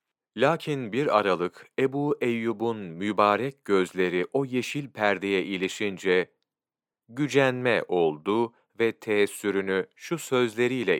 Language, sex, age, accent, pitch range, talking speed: Turkish, male, 40-59, native, 100-135 Hz, 95 wpm